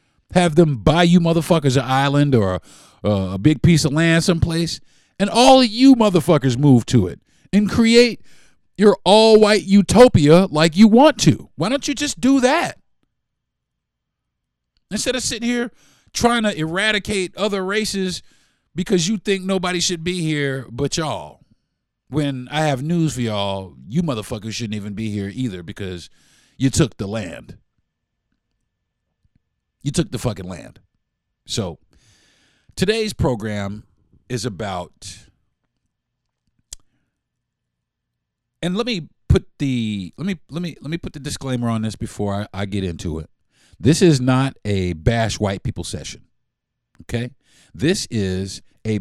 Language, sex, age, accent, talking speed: English, male, 50-69, American, 145 wpm